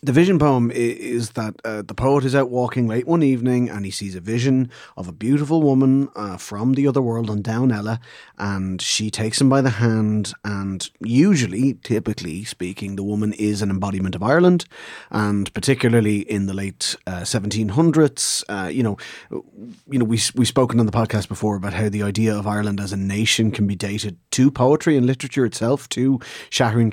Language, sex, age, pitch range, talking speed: English, male, 30-49, 100-125 Hz, 195 wpm